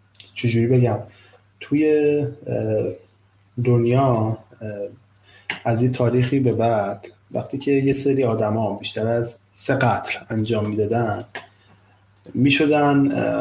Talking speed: 100 wpm